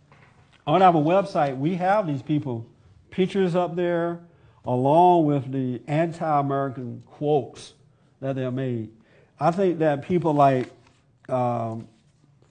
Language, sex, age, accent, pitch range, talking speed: English, male, 50-69, American, 125-150 Hz, 125 wpm